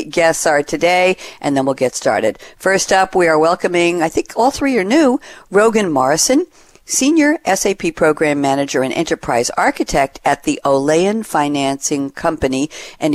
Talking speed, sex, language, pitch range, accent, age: 155 wpm, female, English, 140-190 Hz, American, 50-69